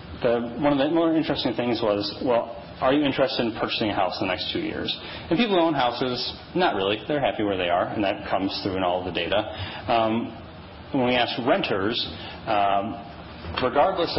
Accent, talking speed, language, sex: American, 200 wpm, English, male